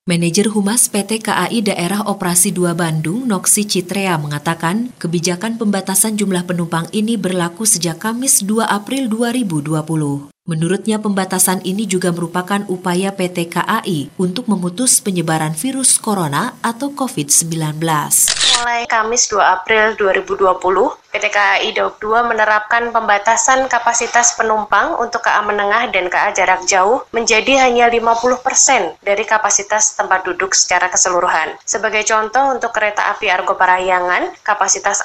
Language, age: Indonesian, 30-49